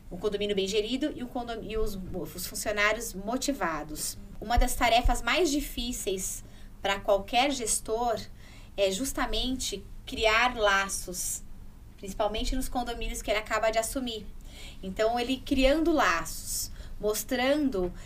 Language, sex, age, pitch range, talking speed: Portuguese, female, 20-39, 200-255 Hz, 115 wpm